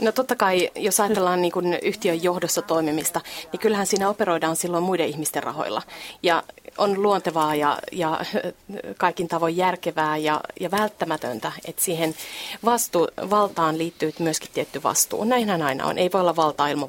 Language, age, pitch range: Finnish, 30-49, 165-195 Hz